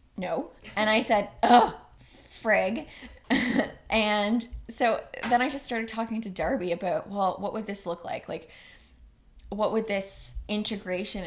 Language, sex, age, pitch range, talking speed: English, female, 20-39, 180-225 Hz, 145 wpm